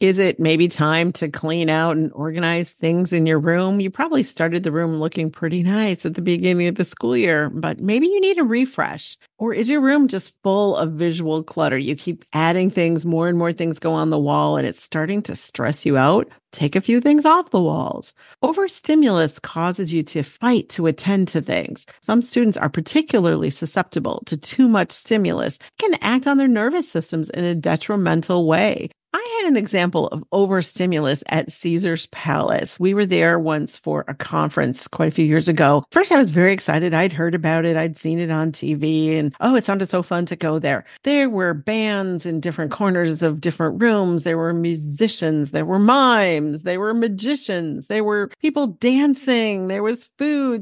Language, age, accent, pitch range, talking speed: English, 50-69, American, 160-225 Hz, 200 wpm